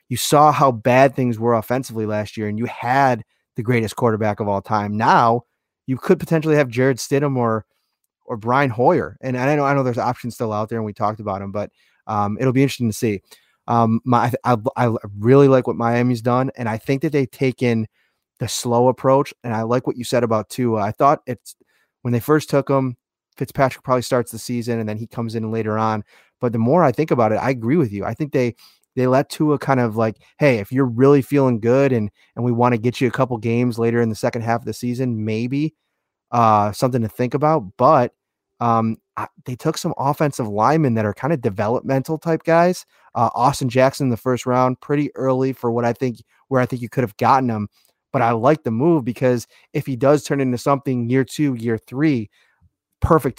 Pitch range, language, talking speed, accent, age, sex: 115-135 Hz, English, 230 wpm, American, 20-39, male